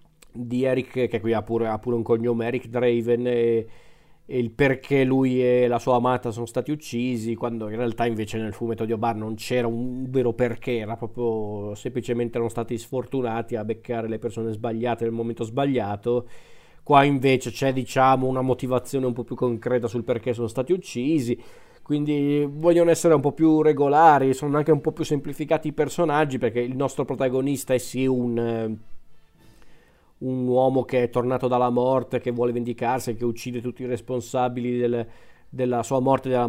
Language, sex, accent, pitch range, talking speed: Italian, male, native, 120-130 Hz, 175 wpm